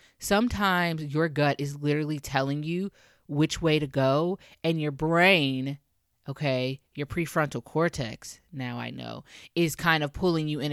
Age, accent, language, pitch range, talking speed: 20-39, American, English, 145-175 Hz, 150 wpm